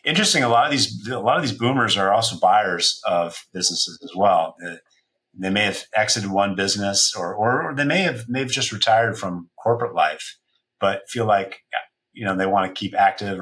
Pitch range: 90-115 Hz